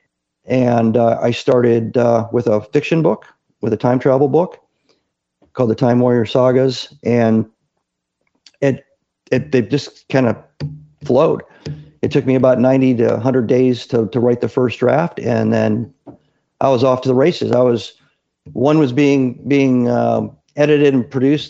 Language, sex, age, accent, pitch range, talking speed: English, male, 50-69, American, 115-135 Hz, 165 wpm